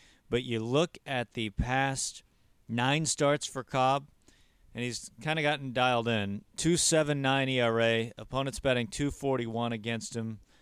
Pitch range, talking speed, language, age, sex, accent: 110-130 Hz, 145 wpm, English, 40-59, male, American